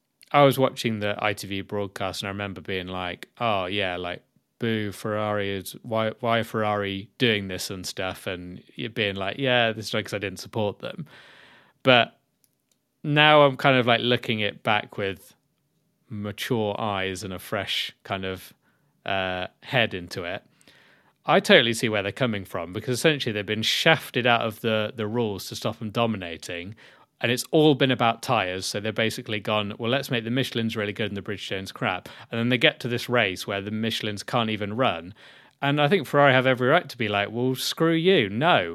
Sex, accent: male, British